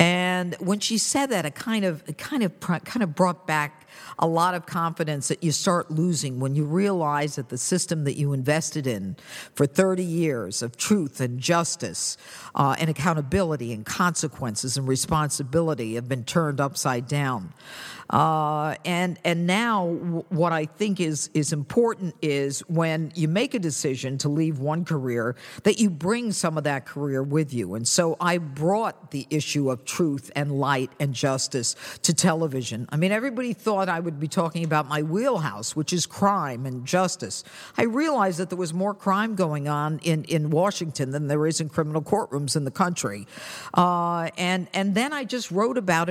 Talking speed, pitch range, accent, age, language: 180 wpm, 145-185 Hz, American, 50-69, English